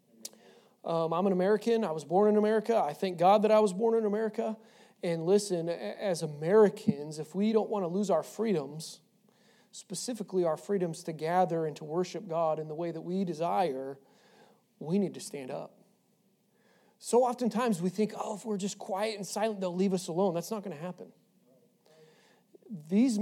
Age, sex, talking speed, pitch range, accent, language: 40-59, male, 185 wpm, 170-220 Hz, American, English